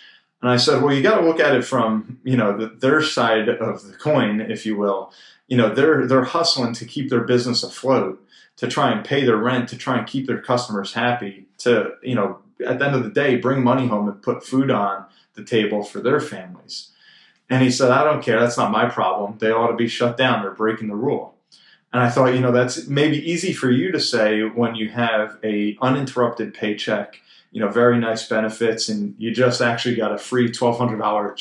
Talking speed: 220 wpm